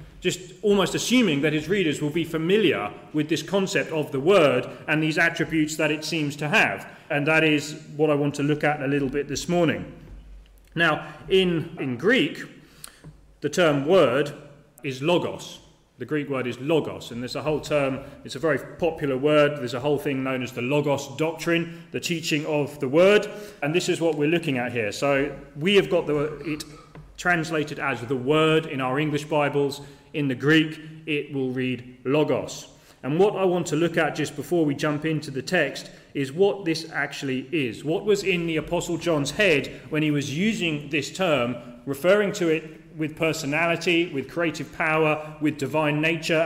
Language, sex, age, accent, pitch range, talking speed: English, male, 30-49, British, 145-170 Hz, 190 wpm